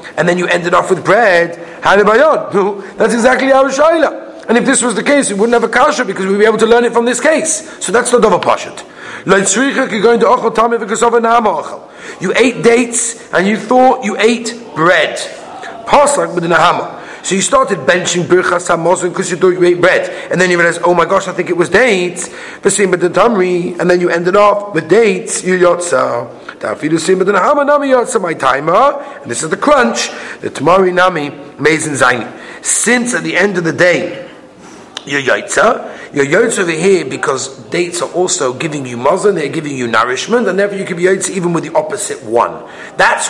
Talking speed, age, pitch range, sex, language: 170 wpm, 40-59, 175-235 Hz, male, English